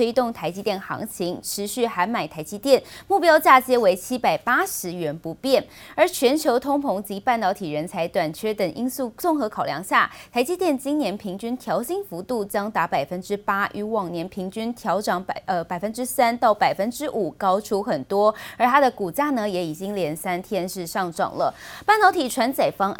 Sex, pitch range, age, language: female, 185-255 Hz, 20-39, Chinese